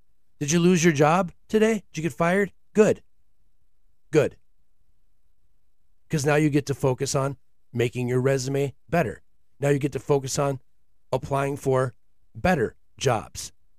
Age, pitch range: 40-59, 95-145 Hz